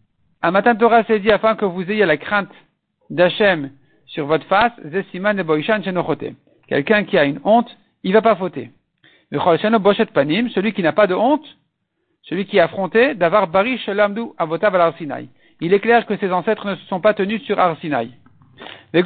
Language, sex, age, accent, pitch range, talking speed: French, male, 50-69, French, 165-225 Hz, 195 wpm